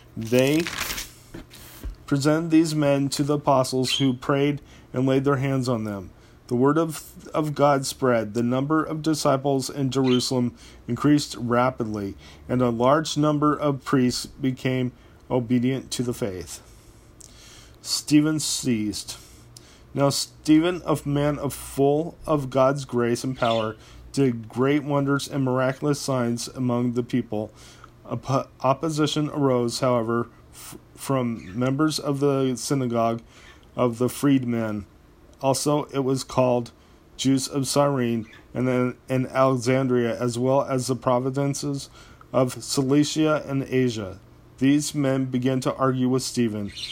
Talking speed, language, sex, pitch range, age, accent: 130 wpm, English, male, 120-140 Hz, 40-59, American